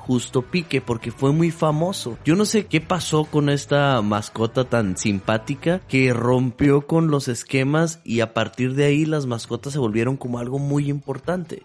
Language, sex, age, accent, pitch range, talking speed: Spanish, male, 30-49, Mexican, 120-155 Hz, 175 wpm